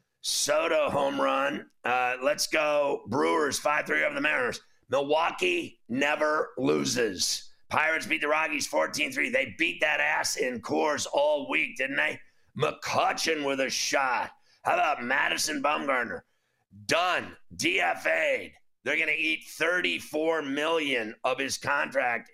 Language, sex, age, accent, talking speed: English, male, 40-59, American, 125 wpm